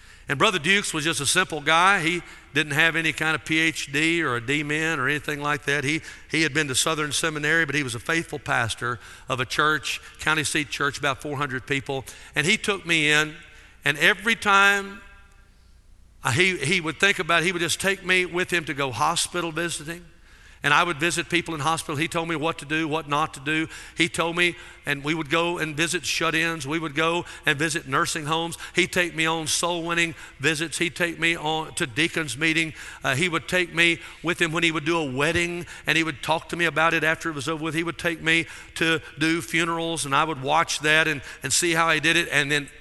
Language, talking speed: English, 230 wpm